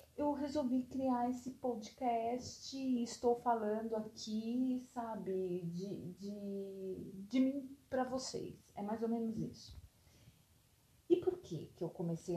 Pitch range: 185-250 Hz